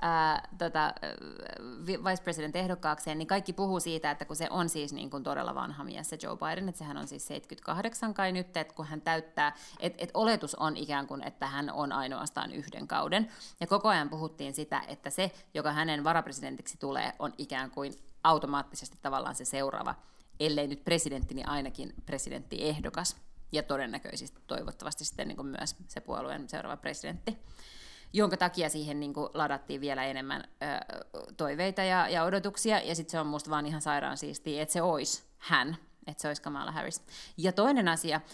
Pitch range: 145-180 Hz